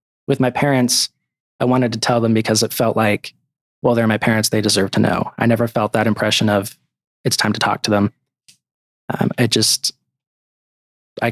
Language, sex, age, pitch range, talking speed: English, male, 20-39, 110-125 Hz, 190 wpm